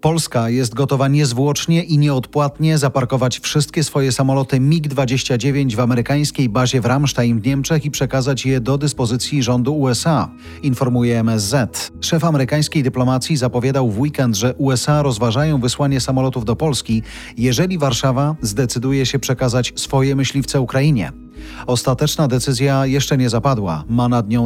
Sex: male